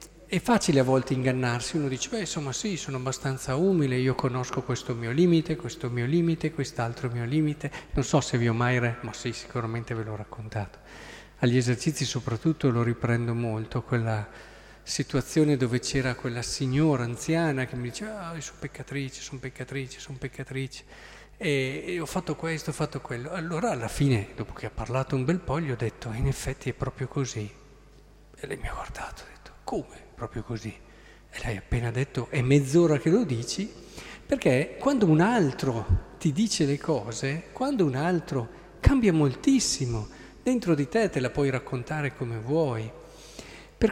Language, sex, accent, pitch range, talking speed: Italian, male, native, 120-155 Hz, 175 wpm